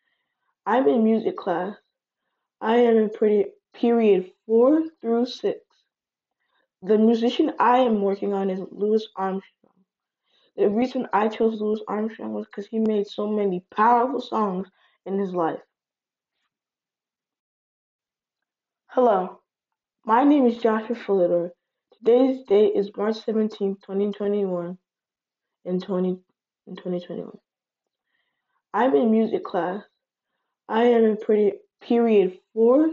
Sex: female